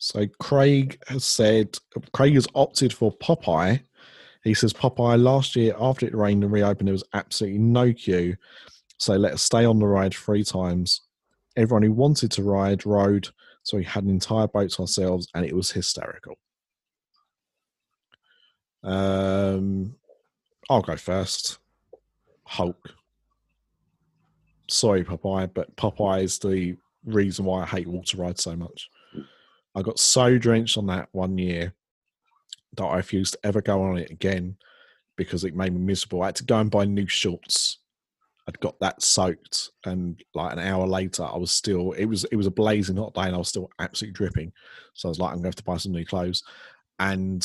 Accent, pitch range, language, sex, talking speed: British, 95-115 Hz, English, male, 180 wpm